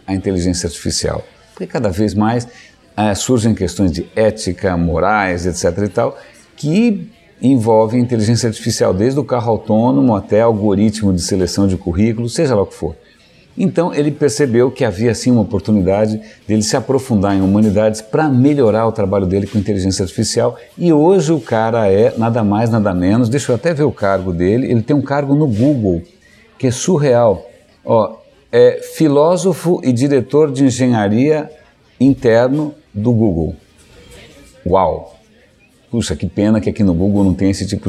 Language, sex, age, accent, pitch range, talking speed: Portuguese, male, 60-79, Brazilian, 95-125 Hz, 165 wpm